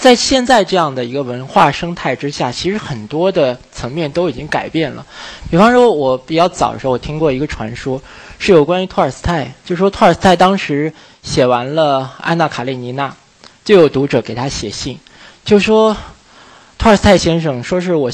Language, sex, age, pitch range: Chinese, male, 20-39, 125-175 Hz